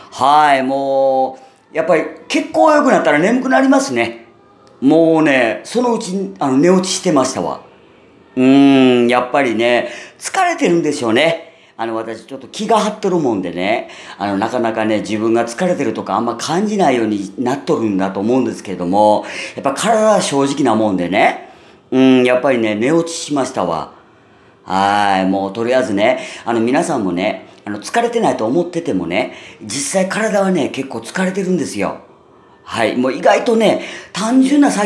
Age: 40-59